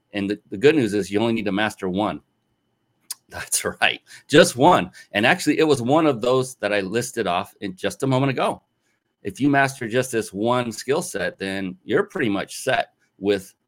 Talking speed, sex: 200 wpm, male